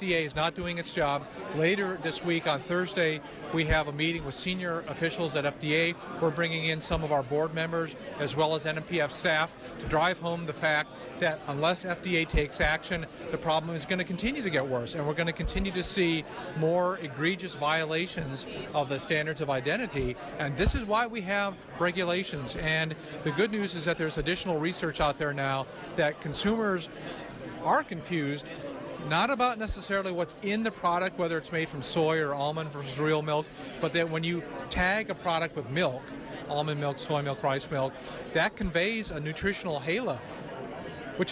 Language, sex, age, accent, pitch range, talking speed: English, male, 40-59, American, 150-175 Hz, 185 wpm